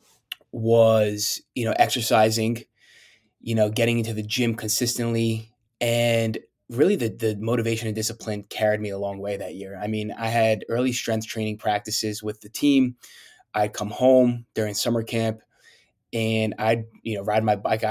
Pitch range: 105-115 Hz